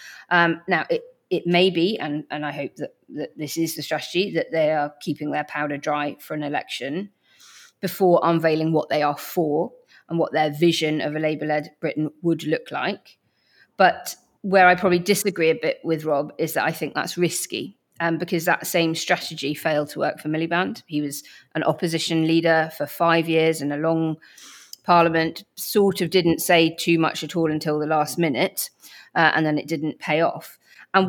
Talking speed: 195 wpm